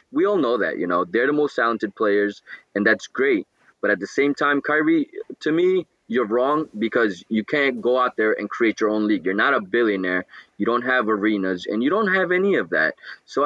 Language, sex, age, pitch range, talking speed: English, male, 20-39, 105-140 Hz, 230 wpm